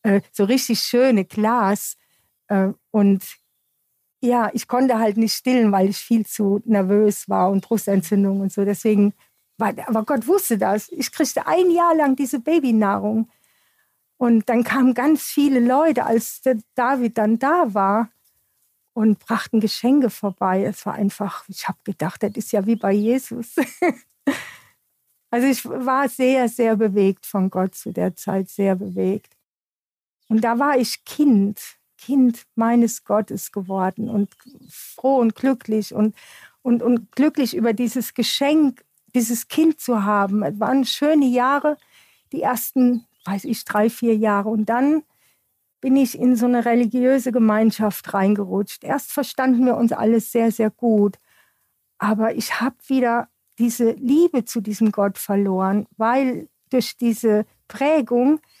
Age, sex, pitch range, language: 50-69, female, 210-255 Hz, German